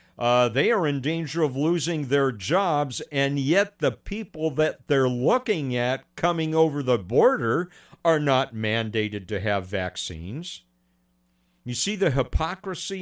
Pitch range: 110-155 Hz